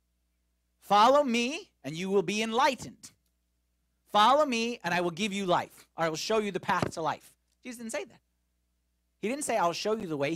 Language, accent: English, American